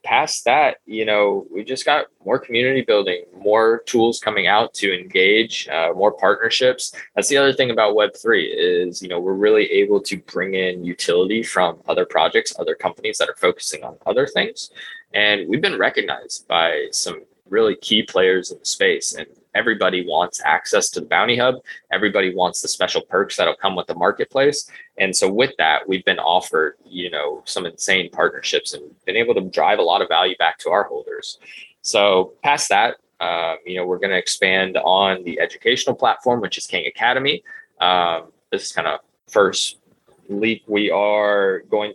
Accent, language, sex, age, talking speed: American, English, male, 20-39, 185 wpm